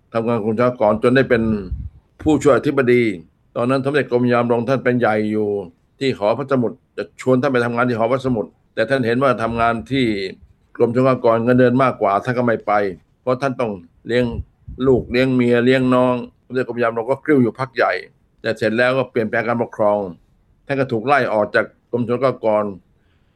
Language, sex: Thai, male